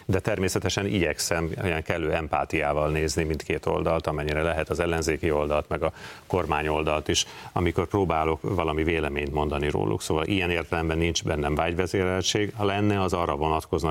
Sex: male